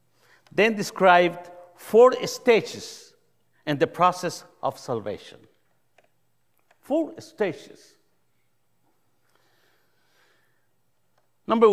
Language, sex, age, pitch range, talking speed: English, male, 60-79, 165-245 Hz, 60 wpm